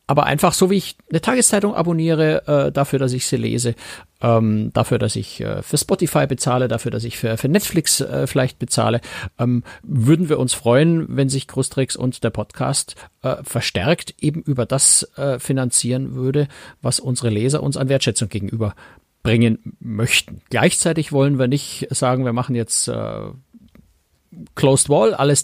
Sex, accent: male, German